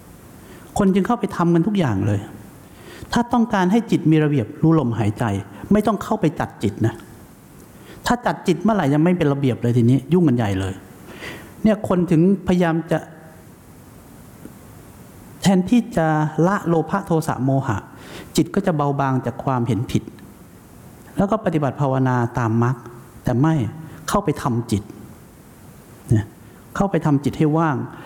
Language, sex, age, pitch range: English, male, 60-79, 115-165 Hz